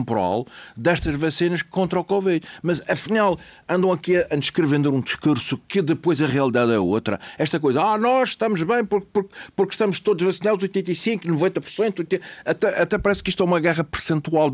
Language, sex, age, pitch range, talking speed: Portuguese, male, 50-69, 145-190 Hz, 180 wpm